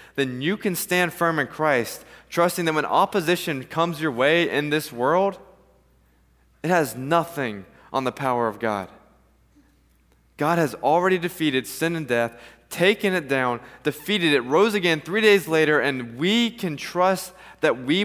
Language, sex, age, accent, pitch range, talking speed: English, male, 20-39, American, 110-160 Hz, 160 wpm